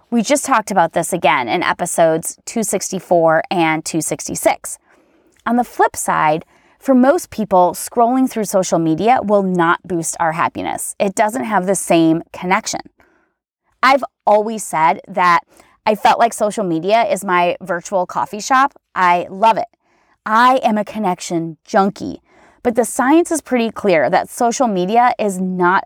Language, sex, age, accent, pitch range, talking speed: English, female, 30-49, American, 180-255 Hz, 155 wpm